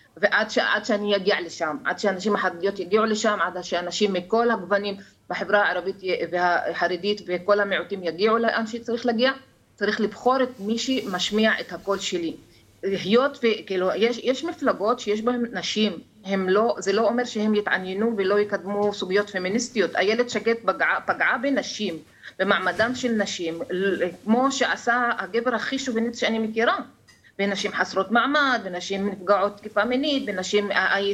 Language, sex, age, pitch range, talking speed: Hebrew, female, 30-49, 195-240 Hz, 135 wpm